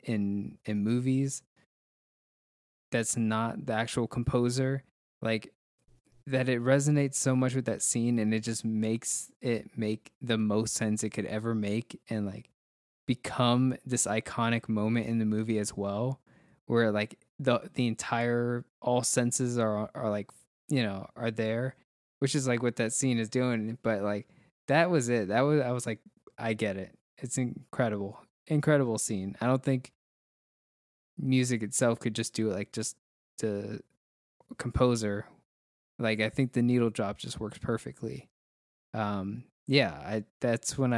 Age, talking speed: 20-39, 155 wpm